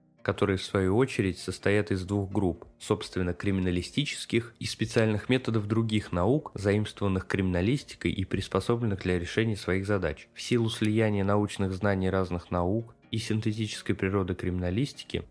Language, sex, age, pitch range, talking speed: Russian, male, 20-39, 95-110 Hz, 135 wpm